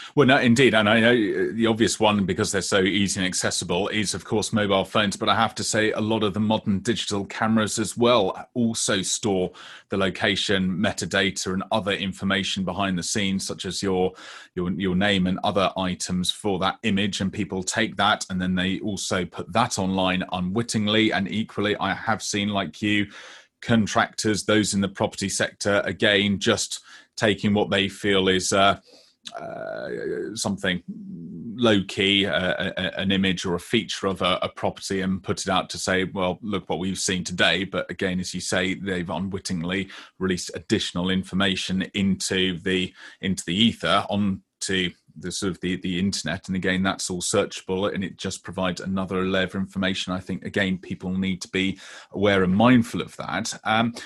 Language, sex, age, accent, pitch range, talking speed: English, male, 30-49, British, 95-110 Hz, 185 wpm